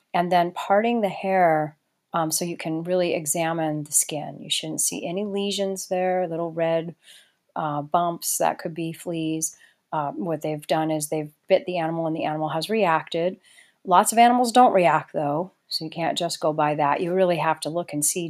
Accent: American